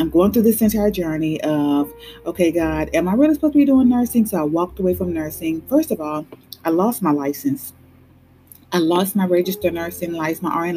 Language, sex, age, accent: English, female, 30-49, American